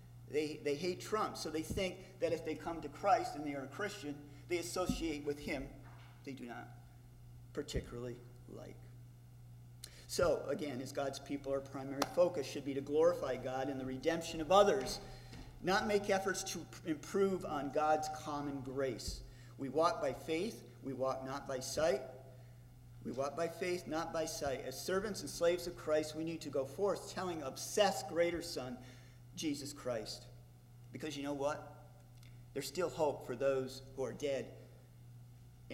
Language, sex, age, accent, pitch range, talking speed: English, male, 50-69, American, 125-165 Hz, 170 wpm